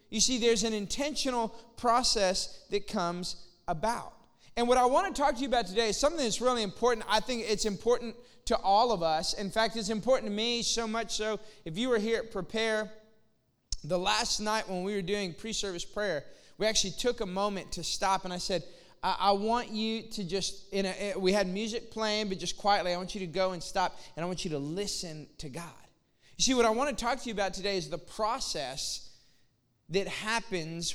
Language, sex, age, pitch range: English, male, 20-39, 180-230 Hz